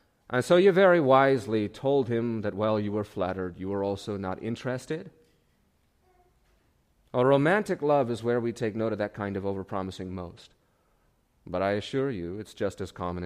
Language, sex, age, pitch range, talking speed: English, male, 30-49, 90-115 Hz, 175 wpm